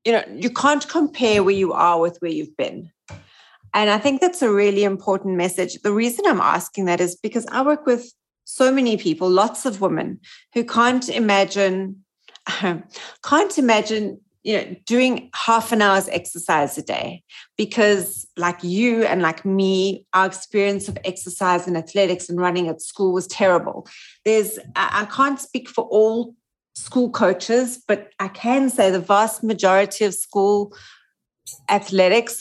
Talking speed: 160 wpm